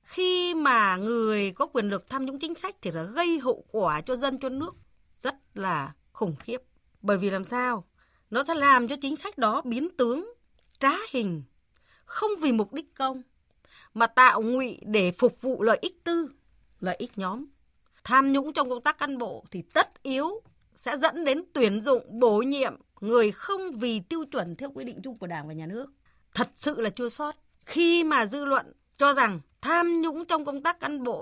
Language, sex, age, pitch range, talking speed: Vietnamese, female, 20-39, 210-300 Hz, 200 wpm